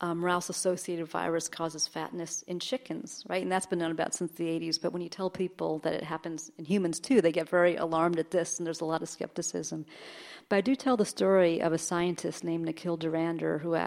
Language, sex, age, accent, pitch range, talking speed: English, female, 40-59, American, 165-185 Hz, 225 wpm